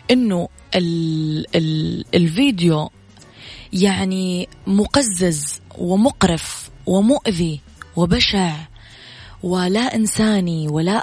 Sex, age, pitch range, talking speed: female, 20-39, 170-225 Hz, 55 wpm